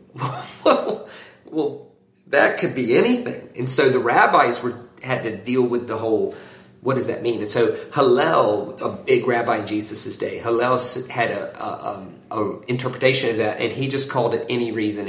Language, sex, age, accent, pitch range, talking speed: English, male, 40-59, American, 105-135 Hz, 185 wpm